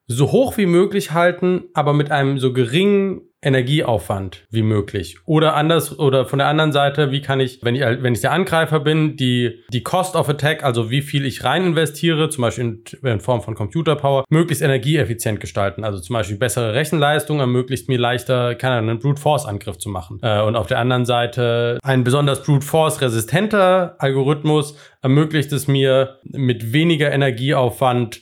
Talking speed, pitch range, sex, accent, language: 175 wpm, 120-150 Hz, male, German, German